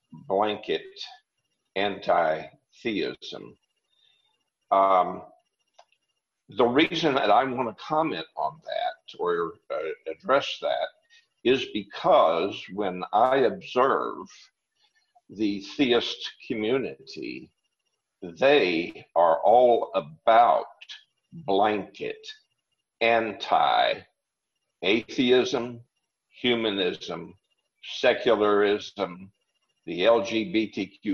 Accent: American